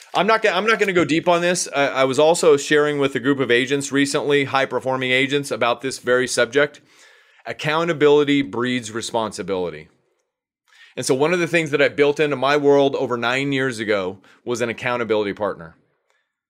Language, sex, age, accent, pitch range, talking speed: English, male, 30-49, American, 130-160 Hz, 175 wpm